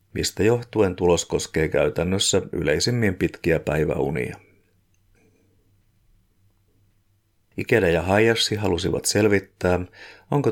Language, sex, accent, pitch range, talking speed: Finnish, male, native, 90-100 Hz, 80 wpm